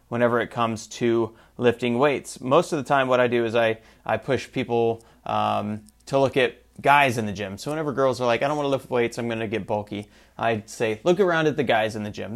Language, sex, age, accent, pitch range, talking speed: English, male, 30-49, American, 110-145 Hz, 255 wpm